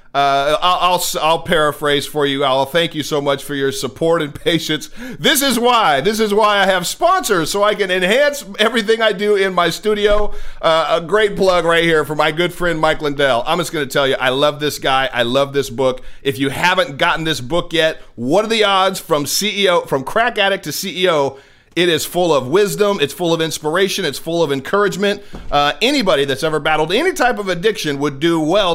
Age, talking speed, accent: 40-59, 215 wpm, American